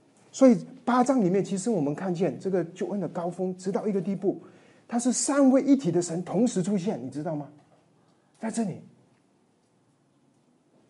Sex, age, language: male, 30-49, Chinese